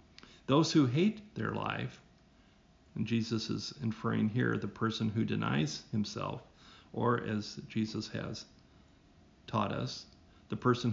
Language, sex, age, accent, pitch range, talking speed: English, male, 50-69, American, 105-125 Hz, 125 wpm